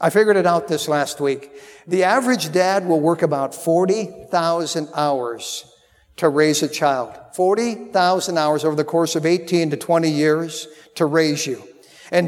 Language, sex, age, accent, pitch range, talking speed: English, male, 50-69, American, 160-205 Hz, 160 wpm